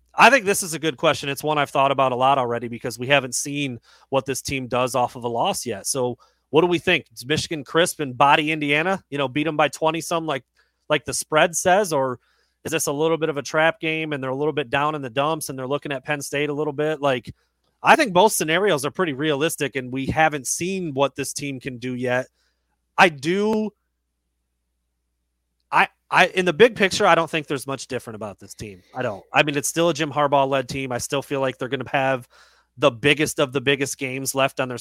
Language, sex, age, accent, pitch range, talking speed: English, male, 30-49, American, 125-155 Hz, 240 wpm